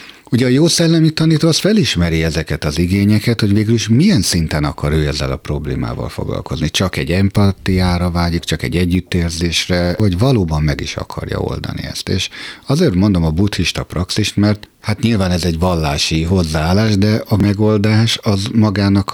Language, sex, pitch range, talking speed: Hungarian, male, 85-110 Hz, 165 wpm